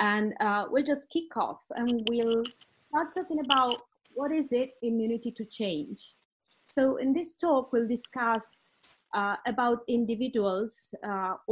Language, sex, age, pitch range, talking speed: English, female, 30-49, 215-265 Hz, 140 wpm